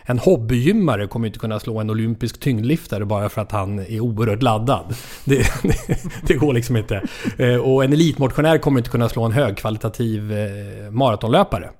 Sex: male